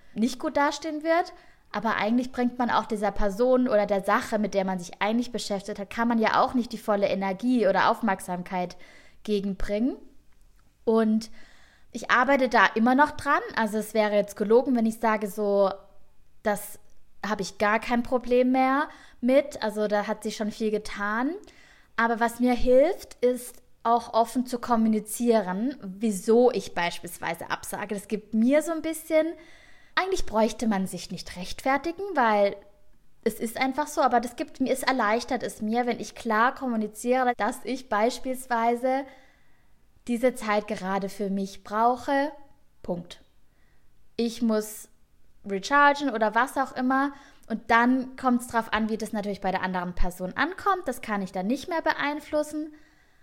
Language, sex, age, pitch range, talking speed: German, female, 20-39, 210-260 Hz, 160 wpm